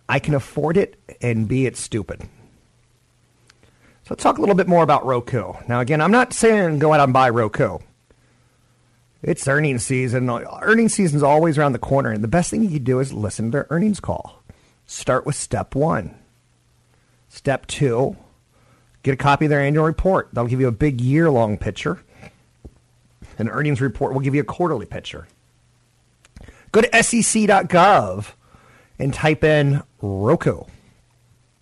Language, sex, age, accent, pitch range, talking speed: English, male, 40-59, American, 120-165 Hz, 165 wpm